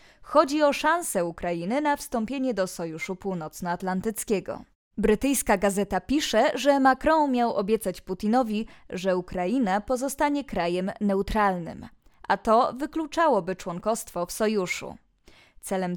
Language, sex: Polish, female